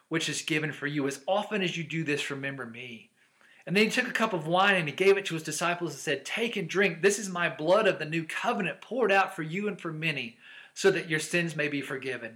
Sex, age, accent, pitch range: male, 40-59, American, 140-175 Hz